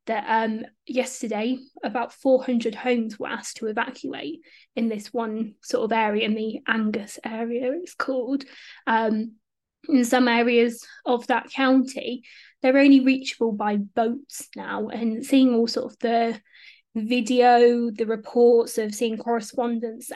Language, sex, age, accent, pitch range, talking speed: English, female, 20-39, British, 230-260 Hz, 140 wpm